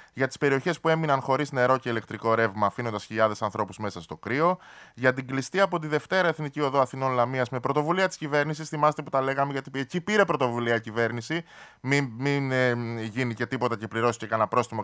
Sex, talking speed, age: male, 200 wpm, 20-39